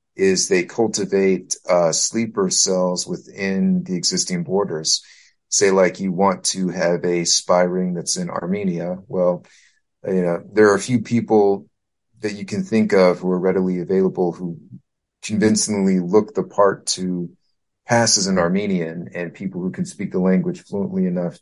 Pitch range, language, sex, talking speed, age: 90-105 Hz, English, male, 165 wpm, 30-49